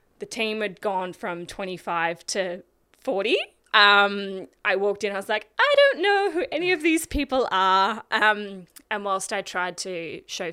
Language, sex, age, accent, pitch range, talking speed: English, female, 20-39, Australian, 170-195 Hz, 175 wpm